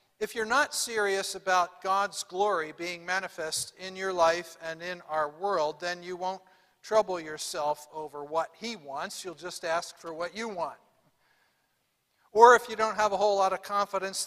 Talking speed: 175 wpm